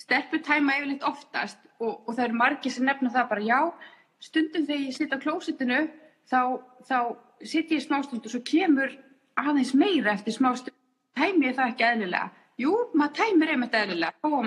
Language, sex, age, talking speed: English, female, 30-49, 170 wpm